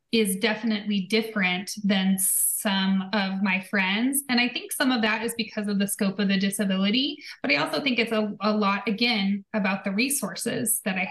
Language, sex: English, female